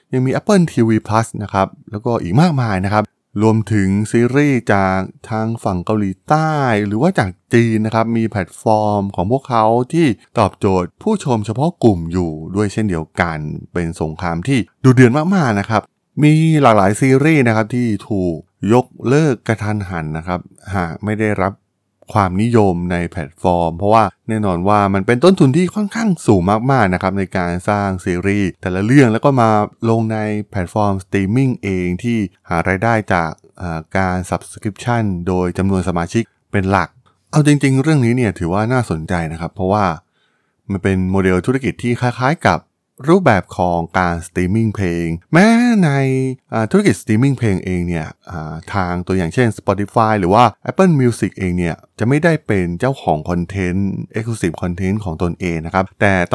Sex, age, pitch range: male, 20-39, 95-125 Hz